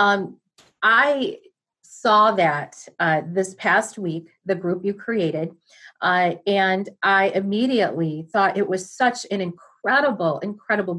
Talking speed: 125 wpm